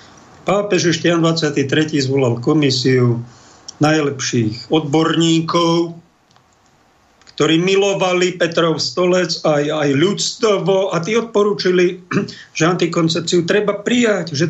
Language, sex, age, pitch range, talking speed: Slovak, male, 50-69, 140-180 Hz, 85 wpm